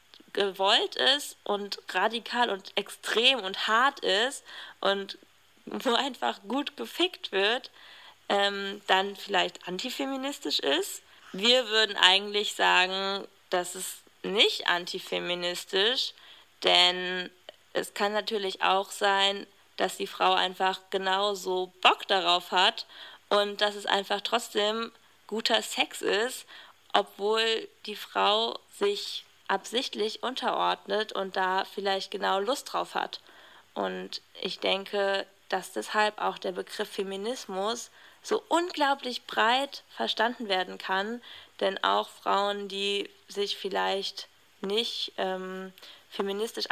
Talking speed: 110 wpm